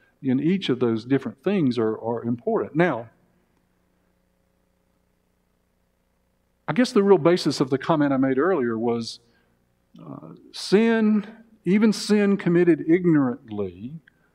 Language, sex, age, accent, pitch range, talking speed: English, male, 50-69, American, 100-150 Hz, 115 wpm